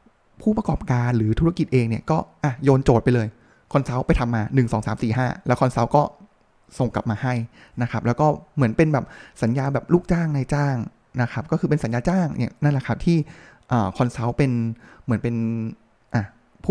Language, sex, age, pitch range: Thai, male, 20-39, 130-170 Hz